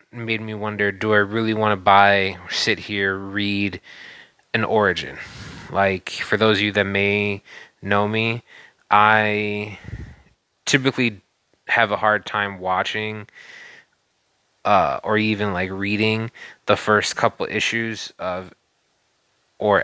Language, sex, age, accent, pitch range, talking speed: English, male, 20-39, American, 100-110 Hz, 125 wpm